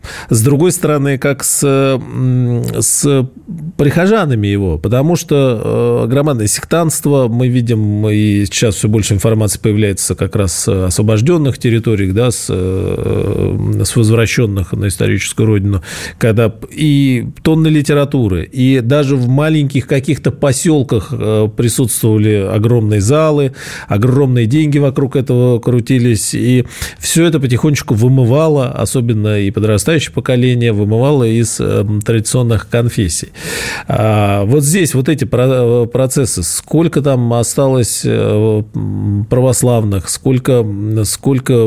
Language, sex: Russian, male